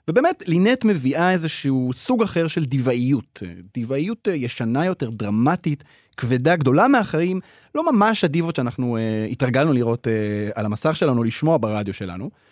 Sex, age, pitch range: male, 30-49, 115-180 Hz